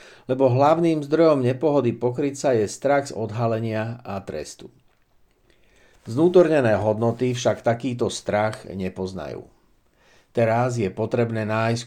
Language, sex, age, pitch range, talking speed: Slovak, male, 60-79, 100-125 Hz, 110 wpm